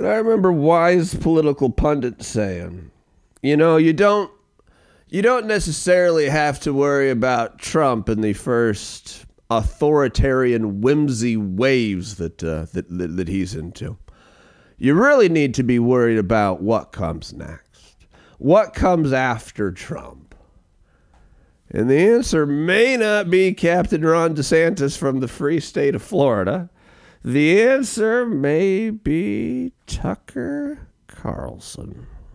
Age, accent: 40-59, American